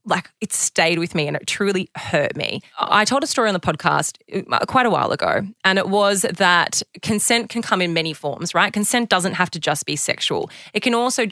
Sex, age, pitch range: female, 20-39, 170-220 Hz